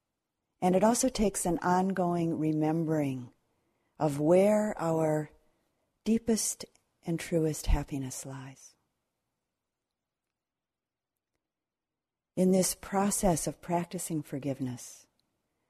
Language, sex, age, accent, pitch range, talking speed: English, female, 50-69, American, 140-170 Hz, 80 wpm